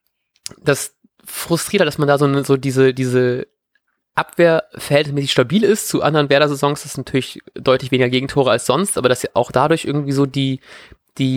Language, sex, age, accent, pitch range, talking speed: German, male, 20-39, German, 125-150 Hz, 180 wpm